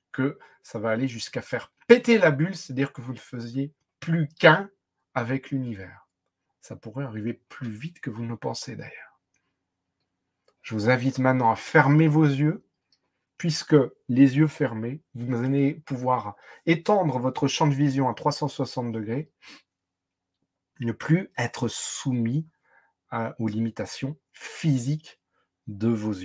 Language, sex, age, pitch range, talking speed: French, male, 40-59, 115-145 Hz, 135 wpm